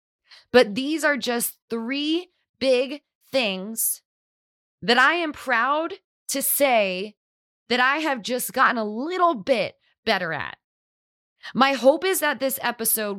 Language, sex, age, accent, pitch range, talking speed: English, female, 20-39, American, 200-265 Hz, 130 wpm